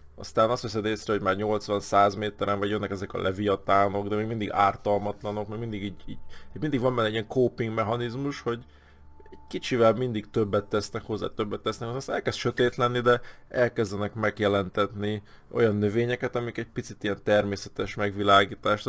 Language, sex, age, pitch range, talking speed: Hungarian, male, 20-39, 100-120 Hz, 165 wpm